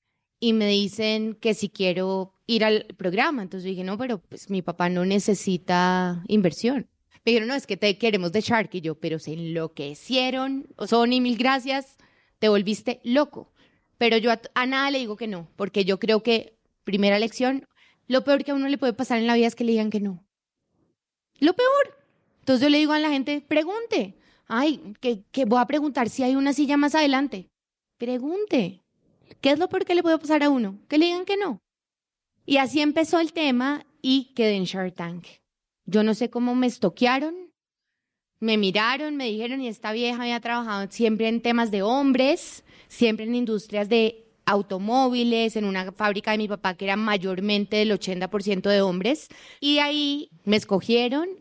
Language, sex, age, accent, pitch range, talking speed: Spanish, female, 20-39, Colombian, 200-270 Hz, 190 wpm